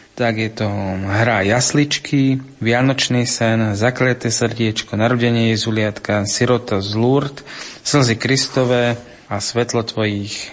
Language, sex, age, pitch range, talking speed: Slovak, male, 30-49, 110-125 Hz, 115 wpm